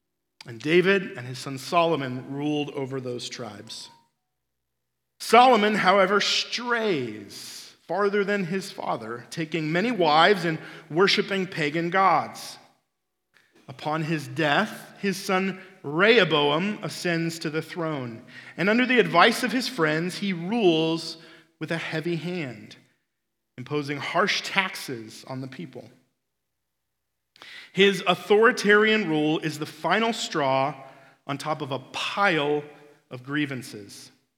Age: 40-59